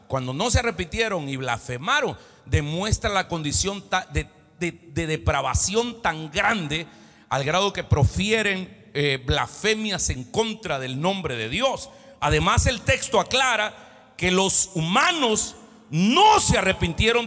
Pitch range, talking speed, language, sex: 155-220 Hz, 125 wpm, Spanish, male